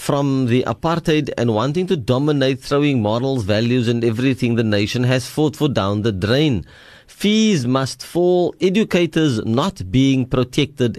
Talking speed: 150 wpm